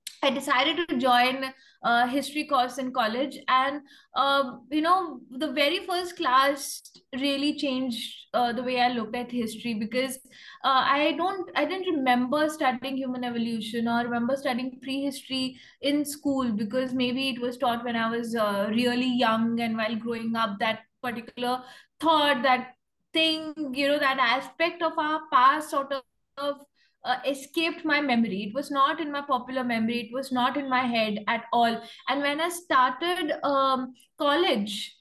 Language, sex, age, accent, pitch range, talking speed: English, female, 20-39, Indian, 245-290 Hz, 165 wpm